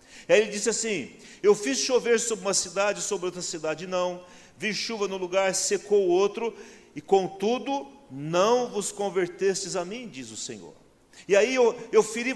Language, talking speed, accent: Portuguese, 180 wpm, Brazilian